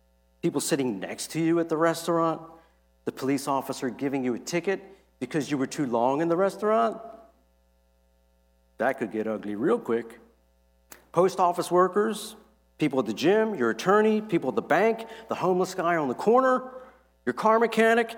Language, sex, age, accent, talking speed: English, male, 50-69, American, 170 wpm